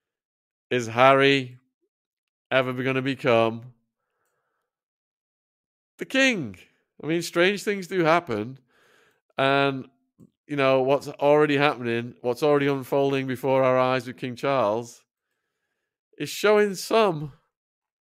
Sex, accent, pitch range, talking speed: male, British, 130-180 Hz, 105 wpm